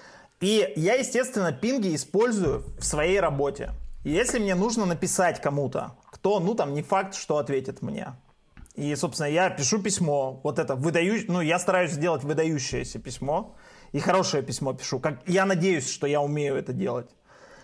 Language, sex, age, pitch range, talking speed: Russian, male, 30-49, 145-195 Hz, 155 wpm